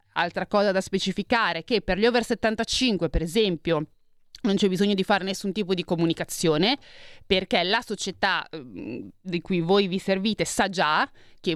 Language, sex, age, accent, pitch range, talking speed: Italian, female, 30-49, native, 175-225 Hz, 165 wpm